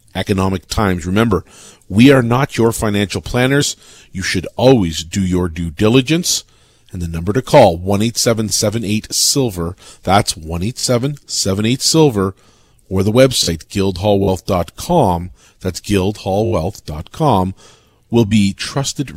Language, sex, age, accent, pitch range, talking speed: English, male, 40-59, American, 95-120 Hz, 110 wpm